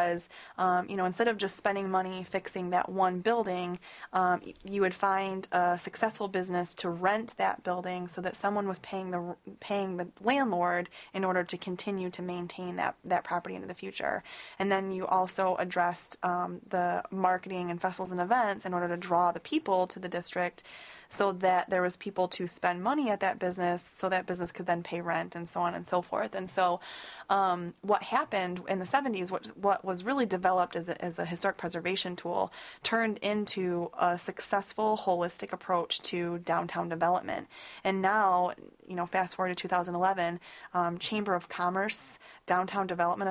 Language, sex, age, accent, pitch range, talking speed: English, female, 20-39, American, 175-195 Hz, 180 wpm